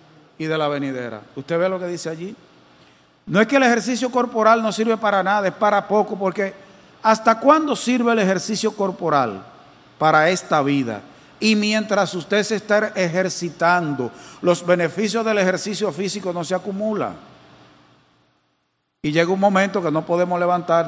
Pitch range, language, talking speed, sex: 140-225 Hz, English, 160 wpm, male